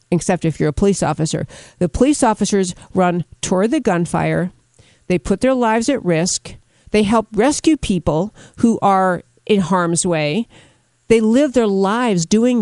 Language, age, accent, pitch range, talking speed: English, 50-69, American, 170-240 Hz, 155 wpm